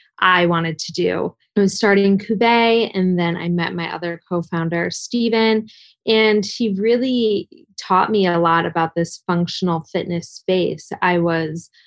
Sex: female